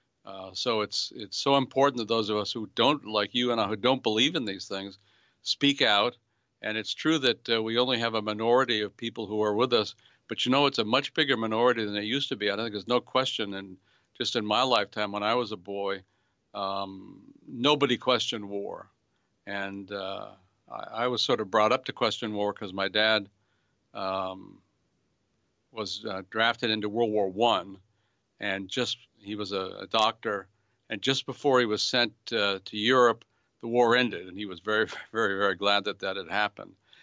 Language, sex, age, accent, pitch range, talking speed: English, male, 50-69, American, 100-120 Hz, 205 wpm